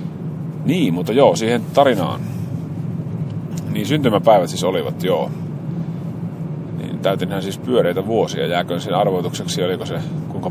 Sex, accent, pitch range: male, native, 125-165 Hz